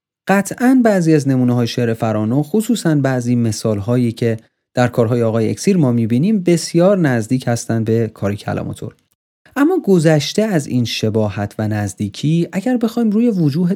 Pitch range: 115-170 Hz